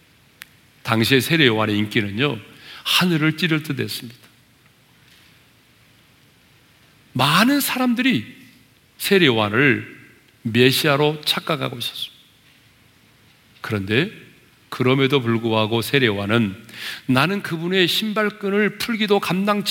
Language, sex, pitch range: Korean, male, 115-185 Hz